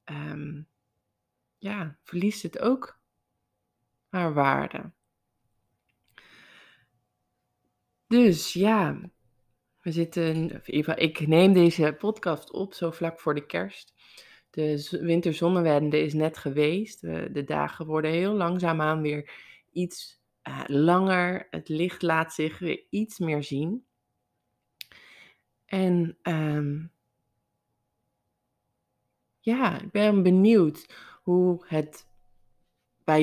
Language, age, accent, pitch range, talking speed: Dutch, 20-39, Dutch, 145-170 Hz, 95 wpm